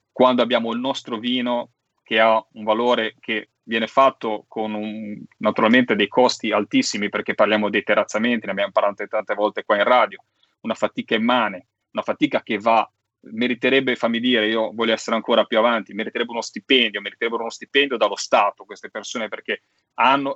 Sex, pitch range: male, 105-125 Hz